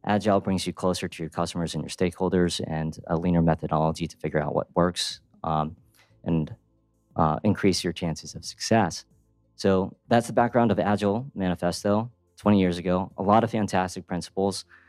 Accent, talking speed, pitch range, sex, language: American, 170 wpm, 90-110 Hz, male, English